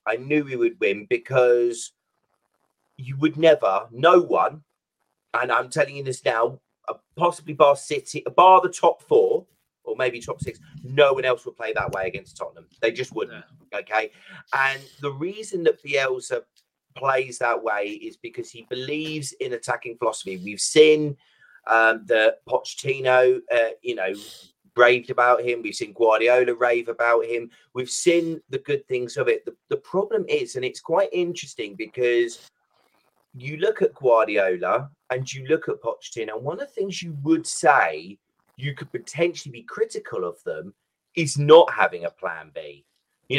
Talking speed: 165 wpm